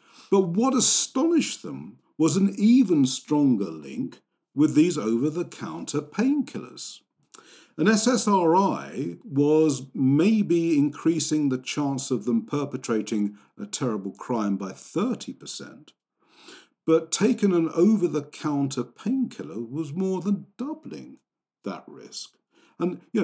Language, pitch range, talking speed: English, 135-205 Hz, 105 wpm